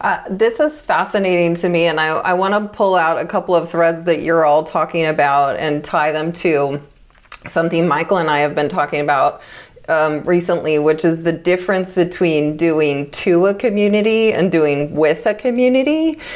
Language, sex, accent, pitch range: English, female, American, 165-205 Hz